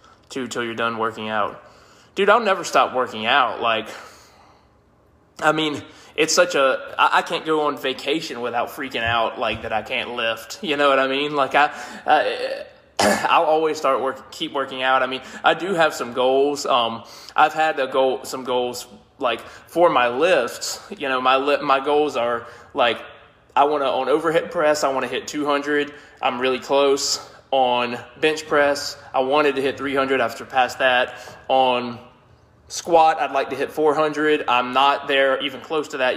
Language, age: English, 20-39